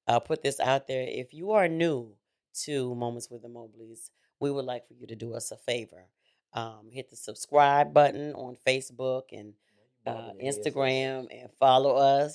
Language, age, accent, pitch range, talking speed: English, 40-59, American, 120-145 Hz, 180 wpm